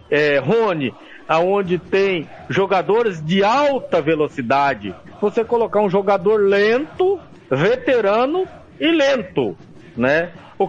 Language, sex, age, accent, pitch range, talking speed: Portuguese, male, 50-69, Brazilian, 195-310 Hz, 100 wpm